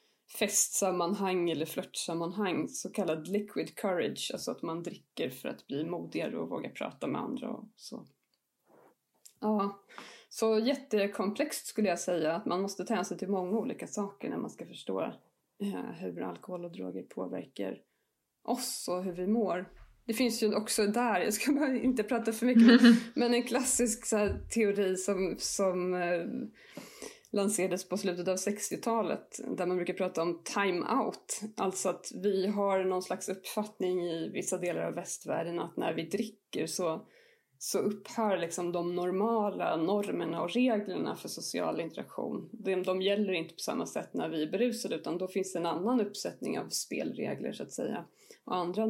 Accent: native